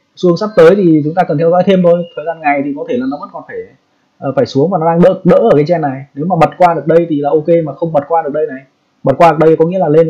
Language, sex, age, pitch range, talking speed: Vietnamese, male, 20-39, 140-170 Hz, 340 wpm